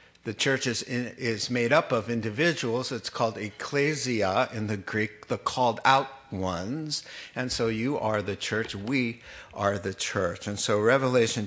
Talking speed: 165 wpm